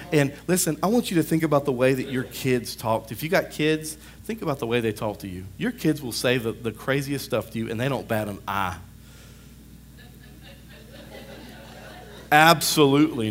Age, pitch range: 40-59, 115-160 Hz